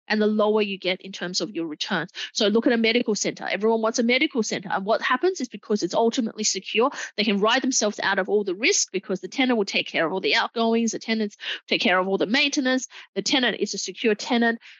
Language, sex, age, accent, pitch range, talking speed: English, female, 30-49, Australian, 195-250 Hz, 250 wpm